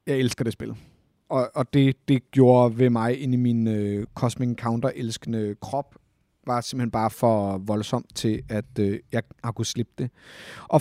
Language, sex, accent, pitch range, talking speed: Danish, male, native, 120-145 Hz, 185 wpm